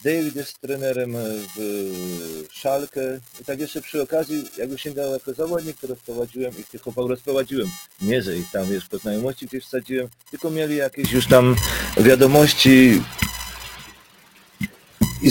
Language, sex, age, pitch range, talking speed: Polish, male, 40-59, 115-140 Hz, 135 wpm